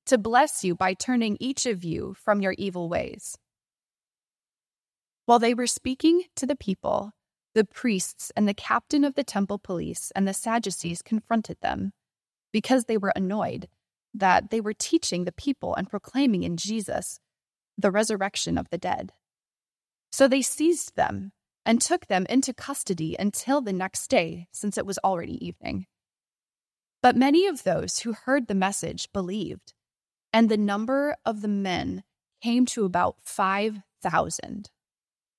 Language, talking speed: English, 150 wpm